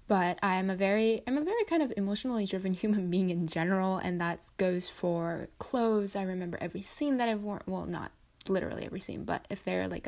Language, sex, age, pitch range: English, female, 10-29, 180-220 Hz